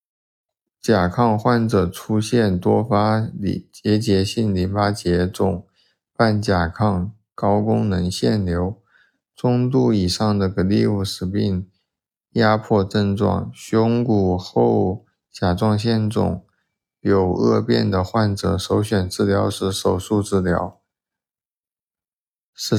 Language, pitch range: Chinese, 95-110 Hz